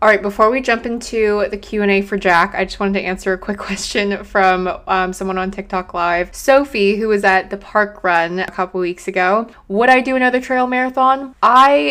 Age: 20-39